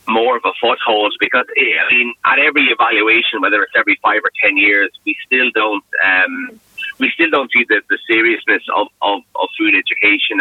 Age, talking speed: 30-49, 190 wpm